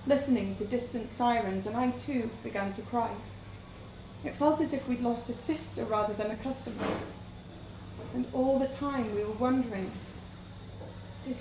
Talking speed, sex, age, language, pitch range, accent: 160 wpm, female, 30-49, English, 190-280 Hz, British